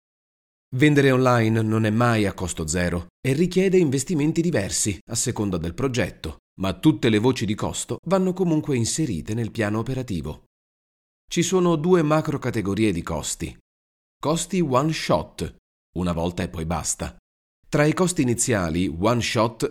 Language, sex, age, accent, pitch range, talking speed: Italian, male, 30-49, native, 85-140 Hz, 140 wpm